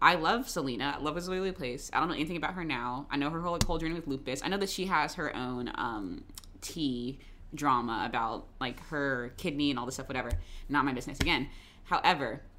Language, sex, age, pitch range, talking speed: English, female, 20-39, 130-185 Hz, 220 wpm